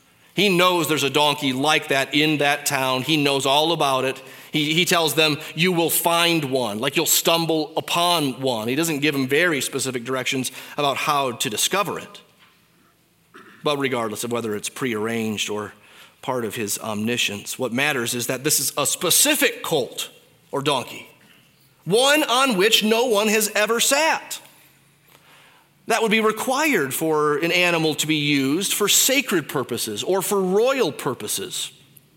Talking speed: 160 wpm